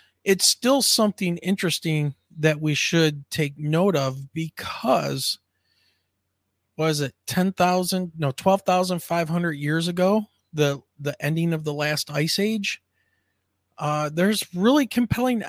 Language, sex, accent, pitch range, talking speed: English, male, American, 140-180 Hz, 115 wpm